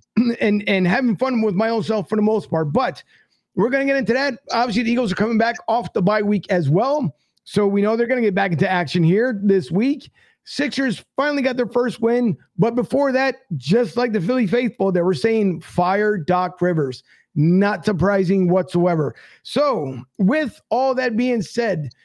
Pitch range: 190-240 Hz